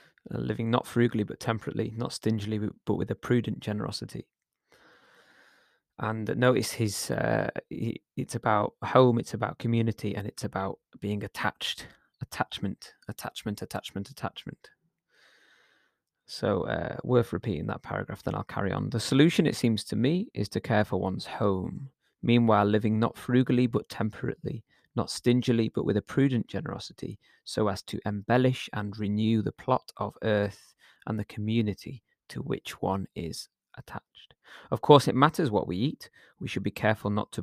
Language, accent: English, British